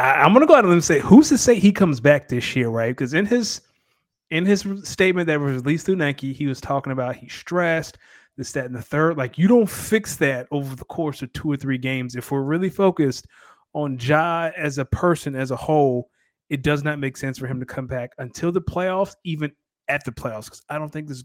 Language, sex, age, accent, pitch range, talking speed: English, male, 30-49, American, 130-180 Hz, 240 wpm